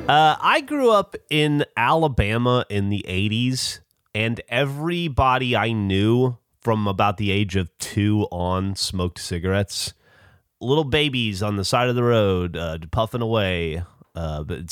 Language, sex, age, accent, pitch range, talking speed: English, male, 30-49, American, 90-125 Hz, 145 wpm